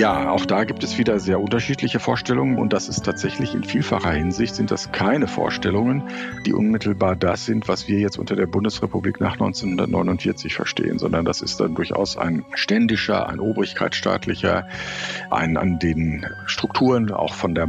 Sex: male